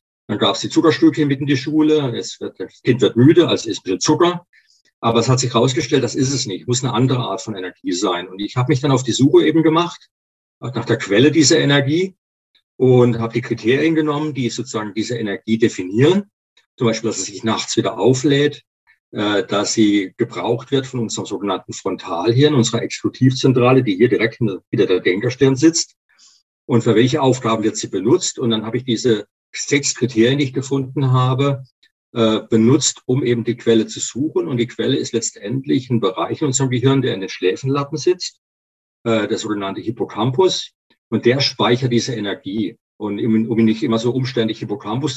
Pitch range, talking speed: 115-145 Hz, 190 wpm